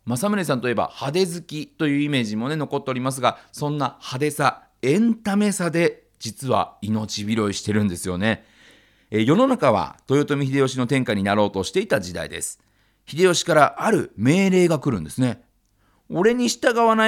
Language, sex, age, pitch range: Japanese, male, 40-59, 125-205 Hz